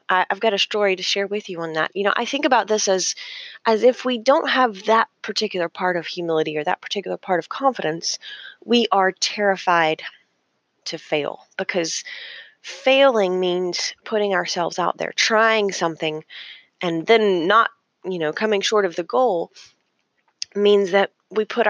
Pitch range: 175-230 Hz